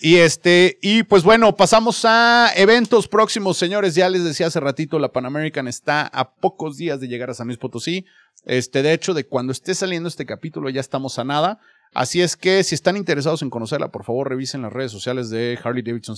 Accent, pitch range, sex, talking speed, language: Mexican, 115-165 Hz, male, 215 wpm, Spanish